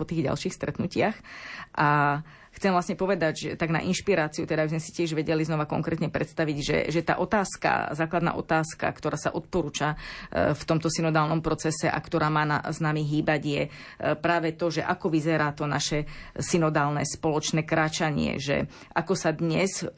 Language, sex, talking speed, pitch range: Slovak, female, 165 wpm, 150-170 Hz